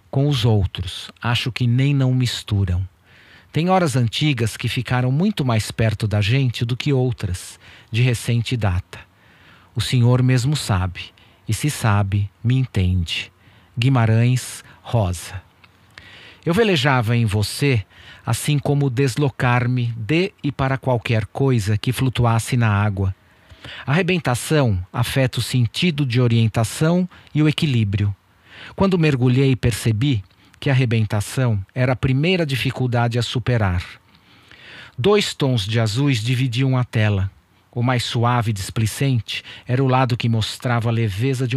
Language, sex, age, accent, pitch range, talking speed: Portuguese, male, 40-59, Brazilian, 105-130 Hz, 135 wpm